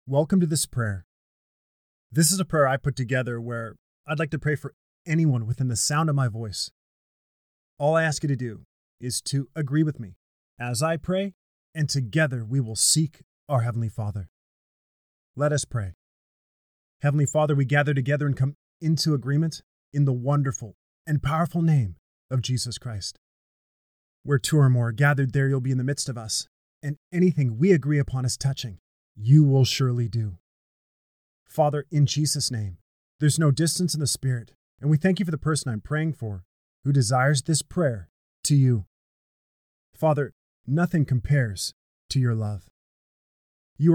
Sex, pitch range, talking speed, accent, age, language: male, 115-155 Hz, 170 wpm, American, 30-49, English